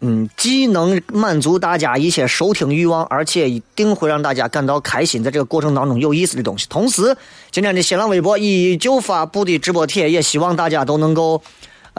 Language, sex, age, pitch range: Chinese, male, 30-49, 130-175 Hz